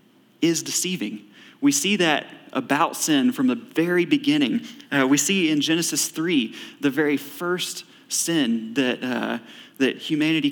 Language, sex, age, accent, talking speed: English, male, 30-49, American, 145 wpm